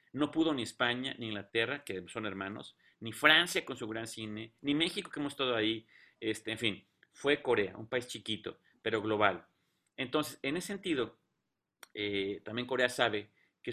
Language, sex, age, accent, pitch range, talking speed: Spanish, male, 30-49, Mexican, 105-135 Hz, 175 wpm